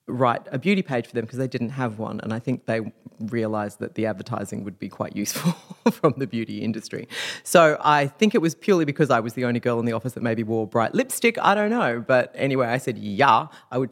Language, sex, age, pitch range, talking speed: English, female, 30-49, 125-175 Hz, 245 wpm